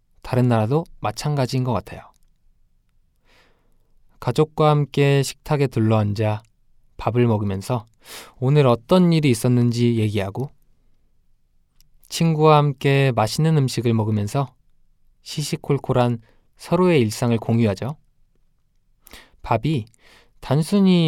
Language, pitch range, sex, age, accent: Korean, 115-155 Hz, male, 20-39, native